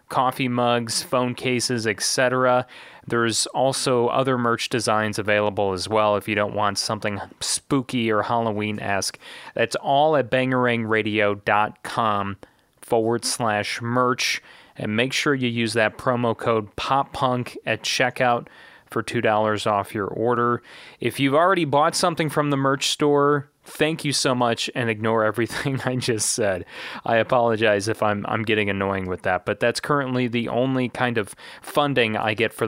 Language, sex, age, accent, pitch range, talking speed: English, male, 30-49, American, 105-130 Hz, 155 wpm